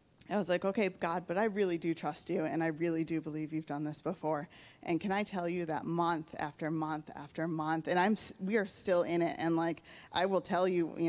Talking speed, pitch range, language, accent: 245 wpm, 160-185 Hz, English, American